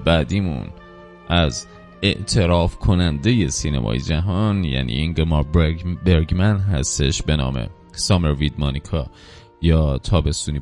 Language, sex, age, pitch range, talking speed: Persian, male, 30-49, 75-100 Hz, 100 wpm